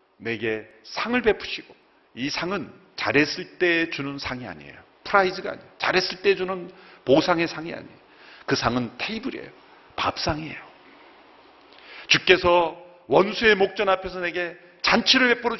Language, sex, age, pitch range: Korean, male, 40-59, 130-190 Hz